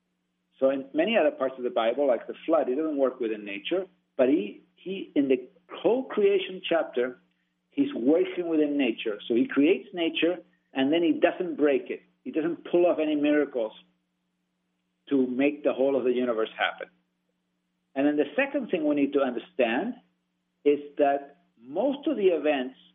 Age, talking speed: 50-69, 175 wpm